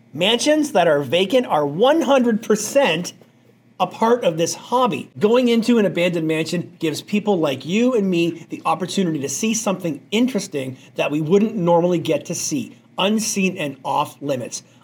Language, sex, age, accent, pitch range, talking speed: English, male, 40-59, American, 160-215 Hz, 160 wpm